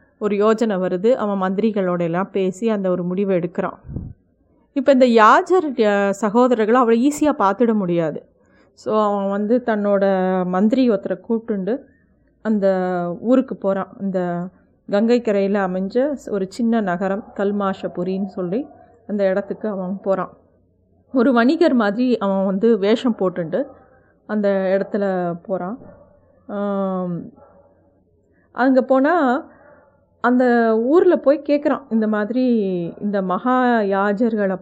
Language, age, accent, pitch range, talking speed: Tamil, 30-49, native, 195-250 Hz, 105 wpm